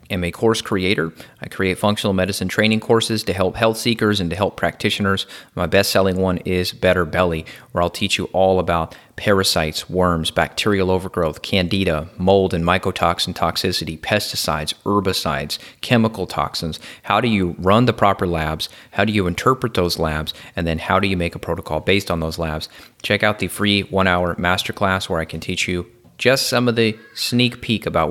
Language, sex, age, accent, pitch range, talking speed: English, male, 30-49, American, 85-105 Hz, 190 wpm